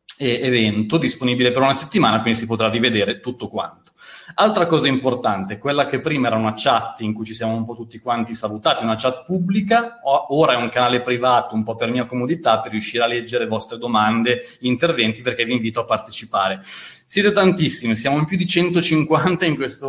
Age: 30-49